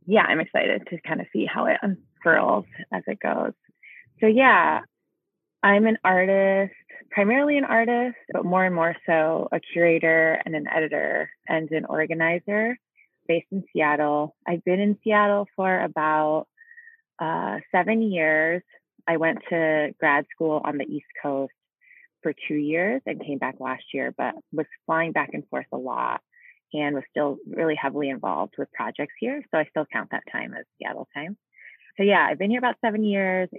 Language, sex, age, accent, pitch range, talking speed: English, female, 20-39, American, 150-205 Hz, 175 wpm